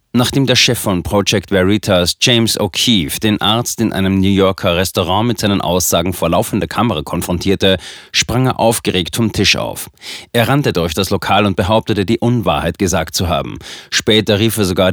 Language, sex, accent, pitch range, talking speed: German, male, German, 90-115 Hz, 175 wpm